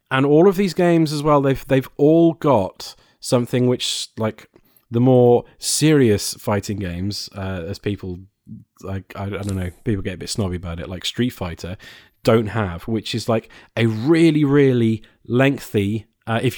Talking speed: 165 wpm